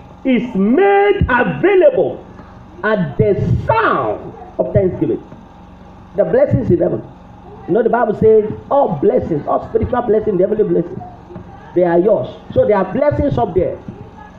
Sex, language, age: male, English, 40-59